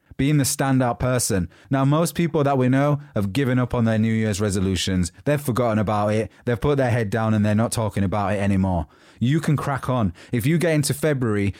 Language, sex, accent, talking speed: English, male, British, 220 wpm